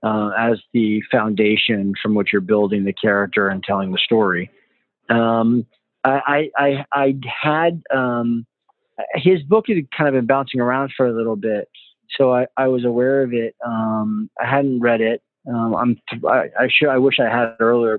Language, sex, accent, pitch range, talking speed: English, male, American, 115-140 Hz, 185 wpm